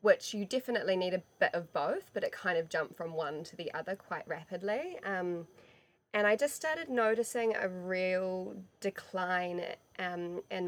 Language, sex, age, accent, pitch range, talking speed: English, female, 20-39, Australian, 170-190 Hz, 175 wpm